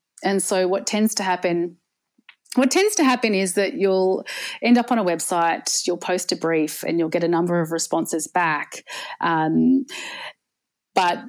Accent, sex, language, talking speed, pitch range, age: Australian, female, English, 170 wpm, 165-210 Hz, 30-49